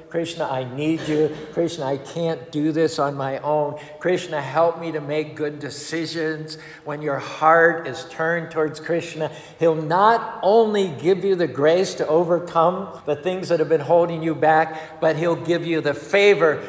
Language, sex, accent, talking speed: English, male, American, 175 wpm